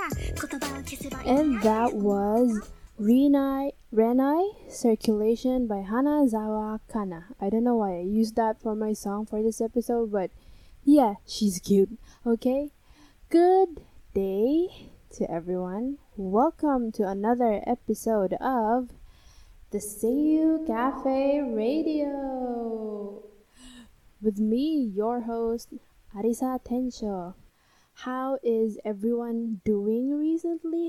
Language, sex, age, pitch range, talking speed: English, female, 10-29, 205-255 Hz, 95 wpm